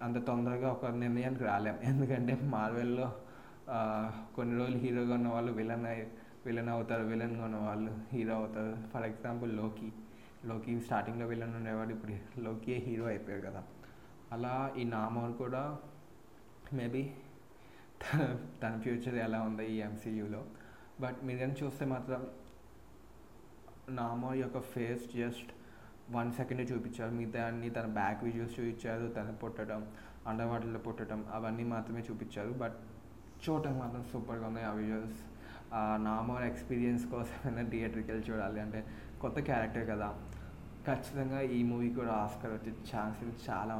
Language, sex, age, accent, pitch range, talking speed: Telugu, male, 20-39, native, 110-120 Hz, 130 wpm